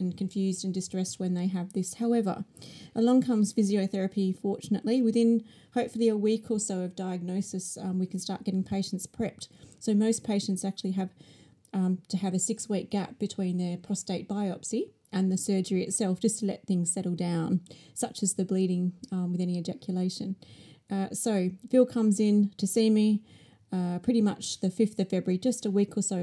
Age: 30-49